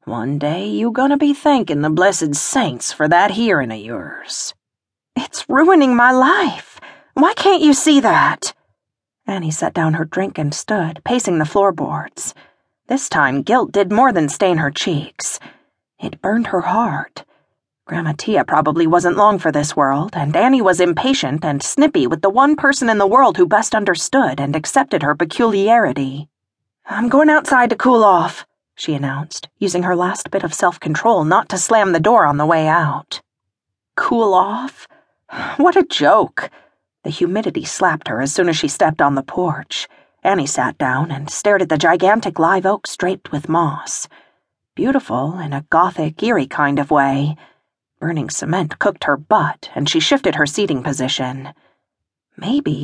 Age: 40-59